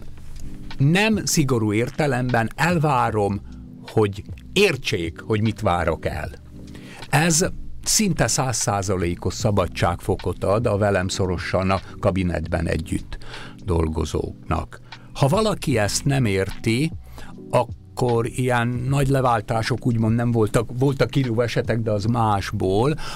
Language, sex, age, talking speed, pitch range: Hungarian, male, 60-79, 105 wpm, 95-135 Hz